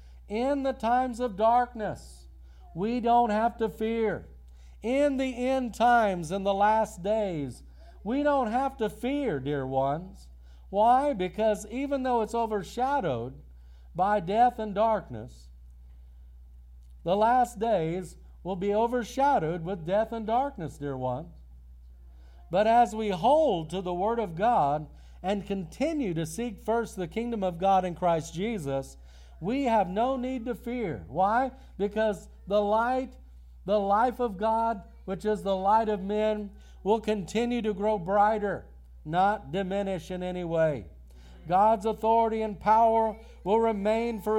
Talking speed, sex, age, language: 140 wpm, male, 50-69, English